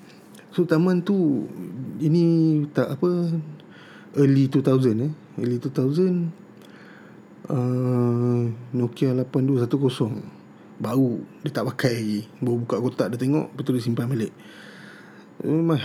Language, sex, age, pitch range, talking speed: Malay, male, 20-39, 120-145 Hz, 105 wpm